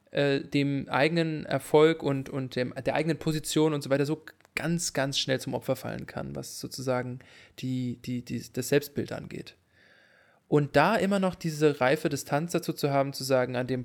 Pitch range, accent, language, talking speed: 130-165 Hz, German, English, 165 wpm